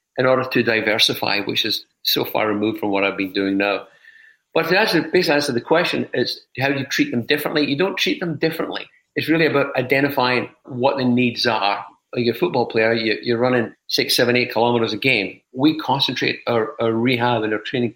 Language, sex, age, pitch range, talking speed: English, male, 50-69, 120-145 Hz, 210 wpm